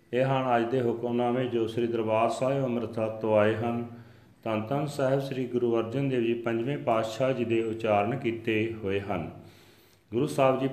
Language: Punjabi